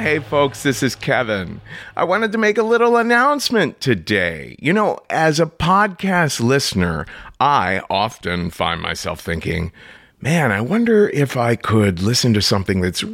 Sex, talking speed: male, 155 wpm